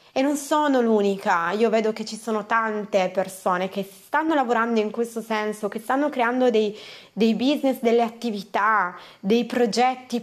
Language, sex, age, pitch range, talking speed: Italian, female, 20-39, 205-265 Hz, 160 wpm